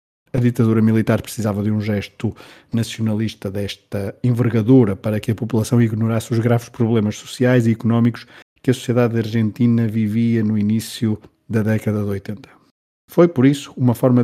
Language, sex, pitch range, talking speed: Portuguese, male, 105-125 Hz, 155 wpm